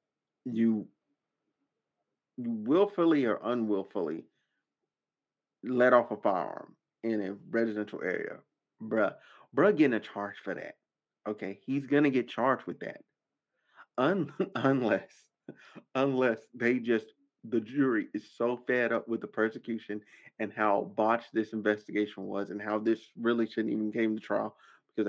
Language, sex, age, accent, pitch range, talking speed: English, male, 30-49, American, 105-125 Hz, 135 wpm